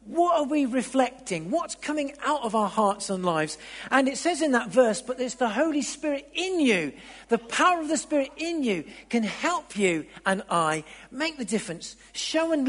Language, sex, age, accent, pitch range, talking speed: English, male, 50-69, British, 200-270 Hz, 200 wpm